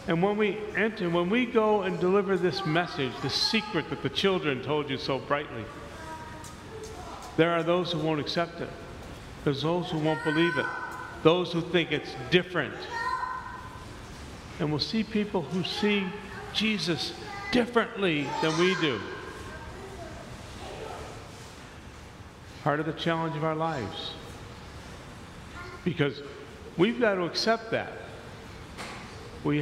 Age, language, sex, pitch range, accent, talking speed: 50-69, English, male, 140-190 Hz, American, 130 wpm